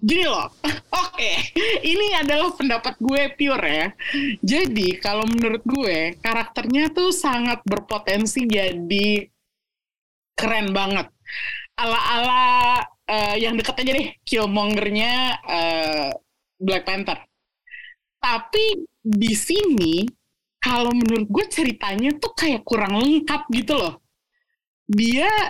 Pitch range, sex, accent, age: 210-305 Hz, female, native, 20-39